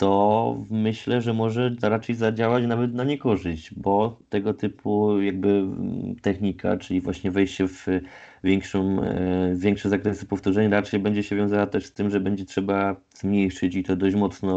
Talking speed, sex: 150 wpm, male